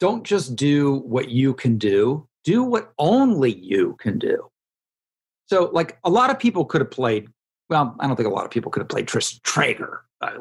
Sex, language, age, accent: male, English, 50-69, American